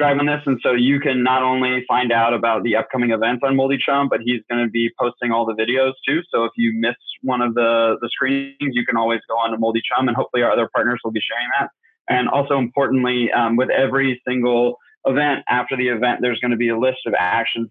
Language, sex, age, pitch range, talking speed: English, male, 20-39, 115-130 Hz, 245 wpm